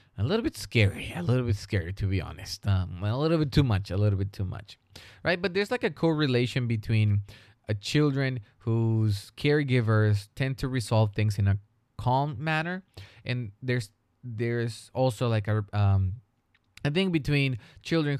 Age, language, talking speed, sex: 20-39, English, 170 wpm, male